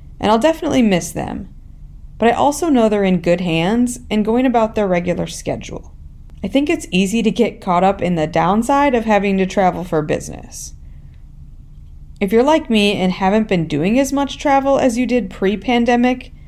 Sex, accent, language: female, American, English